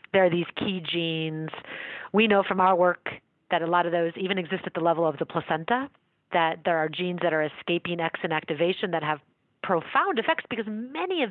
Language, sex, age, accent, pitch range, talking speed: English, female, 30-49, American, 165-195 Hz, 205 wpm